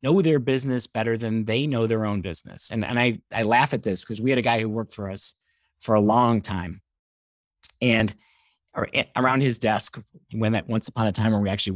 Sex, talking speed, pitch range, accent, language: male, 225 wpm, 110-145 Hz, American, English